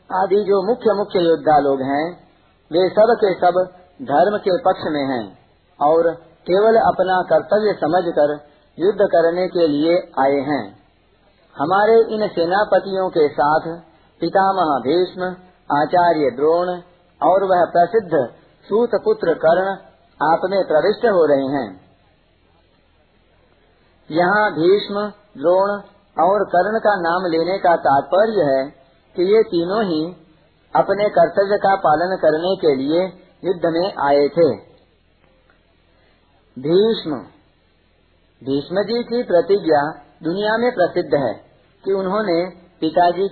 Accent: native